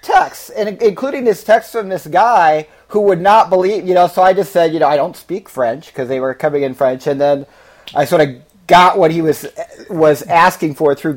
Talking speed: 230 wpm